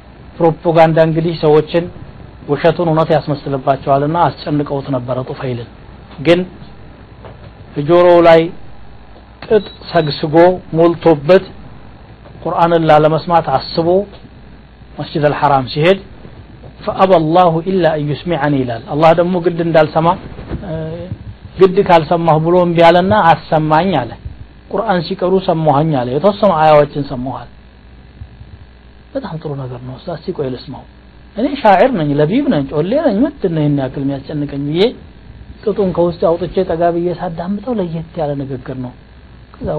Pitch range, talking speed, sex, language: 135-170 Hz, 95 wpm, male, Amharic